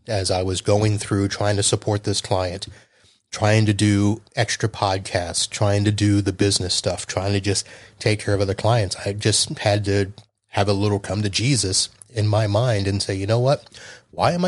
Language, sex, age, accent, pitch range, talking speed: English, male, 30-49, American, 100-115 Hz, 205 wpm